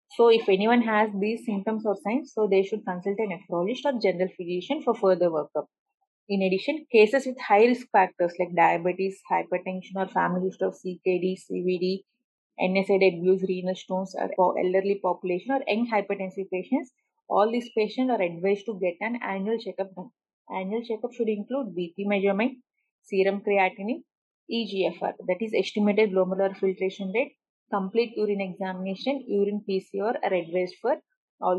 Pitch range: 190-230 Hz